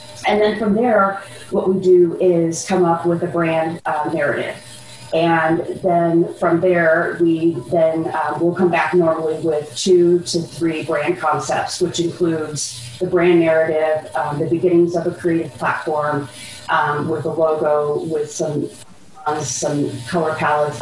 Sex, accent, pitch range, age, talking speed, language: female, American, 155-180 Hz, 30-49, 155 wpm, English